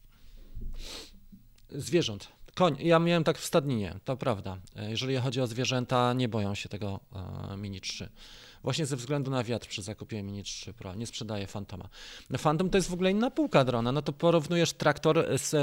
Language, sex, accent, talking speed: Polish, male, native, 175 wpm